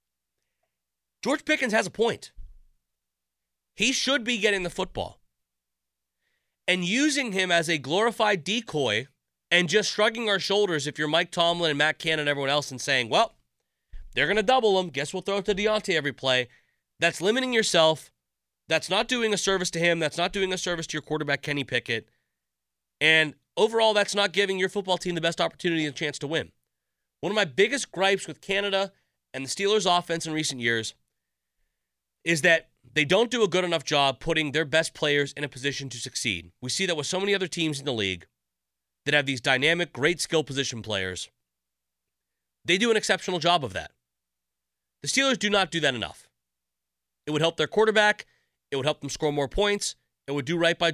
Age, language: 30-49, English